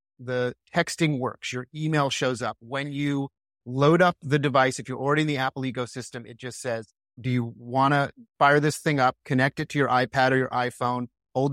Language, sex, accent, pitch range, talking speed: English, male, American, 125-160 Hz, 210 wpm